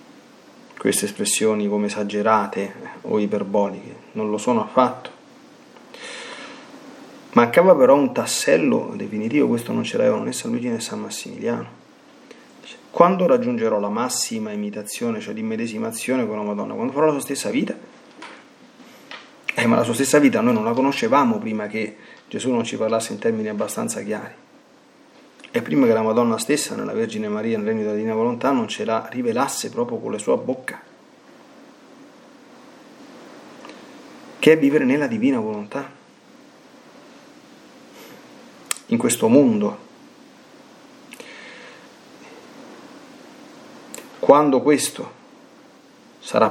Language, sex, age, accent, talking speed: Italian, male, 30-49, native, 125 wpm